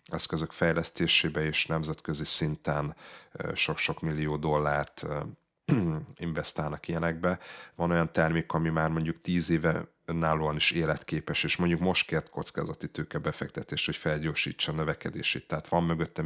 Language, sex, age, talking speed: Hungarian, male, 30-49, 125 wpm